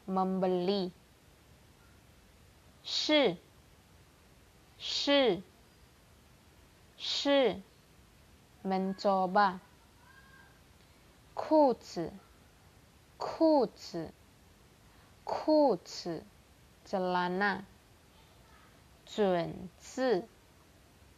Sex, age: female, 20-39